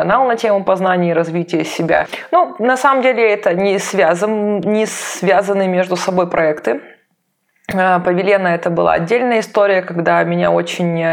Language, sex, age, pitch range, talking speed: Russian, female, 20-39, 170-210 Hz, 140 wpm